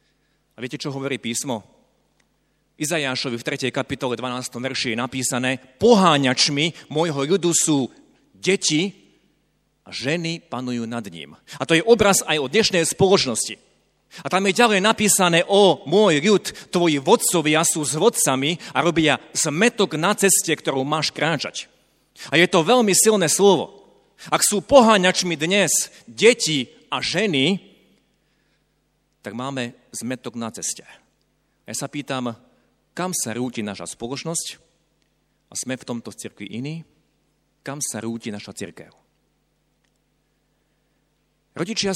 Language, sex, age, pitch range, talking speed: Slovak, male, 40-59, 125-170 Hz, 130 wpm